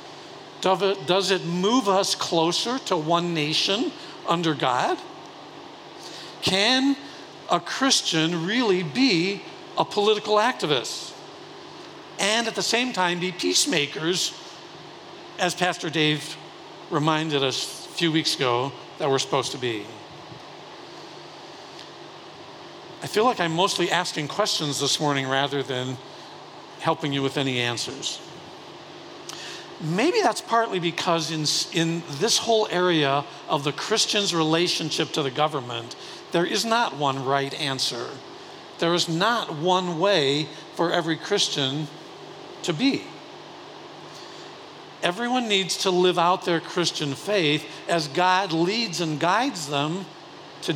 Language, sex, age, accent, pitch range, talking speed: English, male, 60-79, American, 155-210 Hz, 120 wpm